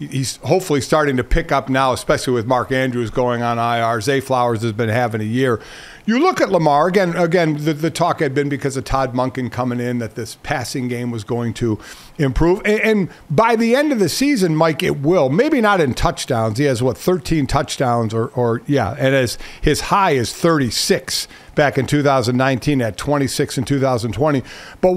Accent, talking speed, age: American, 200 wpm, 50-69